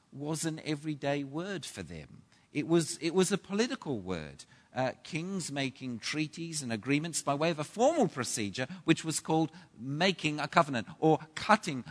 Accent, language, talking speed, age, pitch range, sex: British, English, 165 wpm, 50-69, 130-185 Hz, male